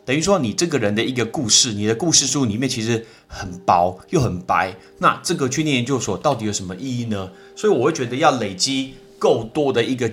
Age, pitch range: 30-49, 105-145 Hz